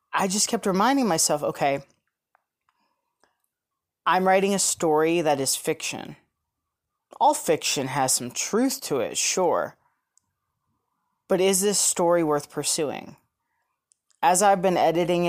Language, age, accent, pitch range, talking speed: English, 30-49, American, 155-195 Hz, 120 wpm